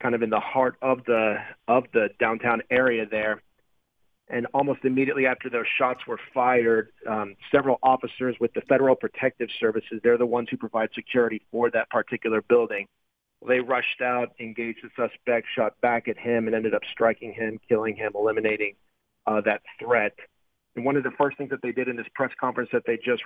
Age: 40-59